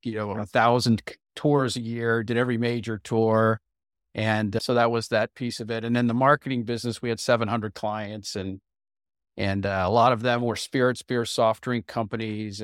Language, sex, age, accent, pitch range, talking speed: English, male, 40-59, American, 105-125 Hz, 190 wpm